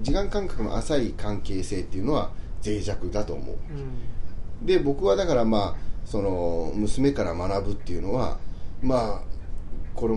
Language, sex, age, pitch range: Japanese, male, 30-49, 90-120 Hz